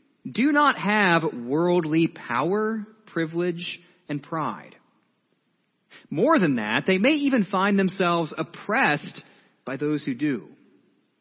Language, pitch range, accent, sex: English, 145-210 Hz, American, male